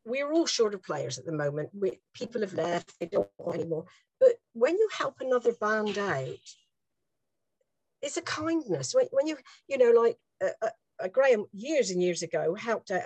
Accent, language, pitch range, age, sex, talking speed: British, English, 205-295 Hz, 50-69, female, 185 wpm